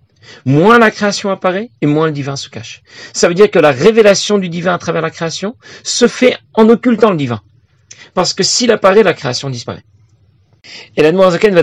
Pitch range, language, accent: 120-175 Hz, French, French